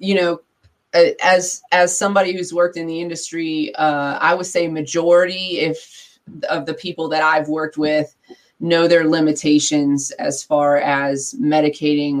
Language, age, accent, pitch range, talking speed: English, 20-39, American, 150-175 Hz, 150 wpm